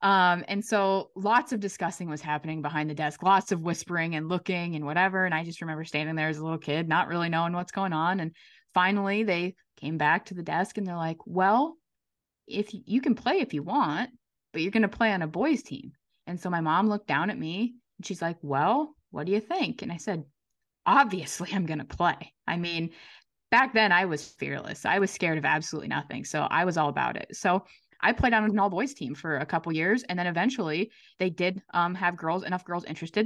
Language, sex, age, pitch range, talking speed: English, female, 20-39, 160-205 Hz, 235 wpm